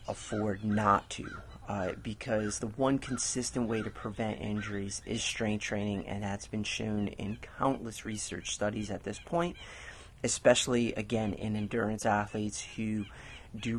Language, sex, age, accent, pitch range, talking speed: English, male, 30-49, American, 100-115 Hz, 145 wpm